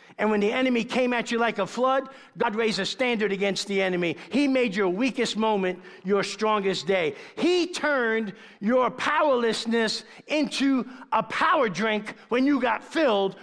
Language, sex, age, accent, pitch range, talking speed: English, male, 50-69, American, 195-250 Hz, 165 wpm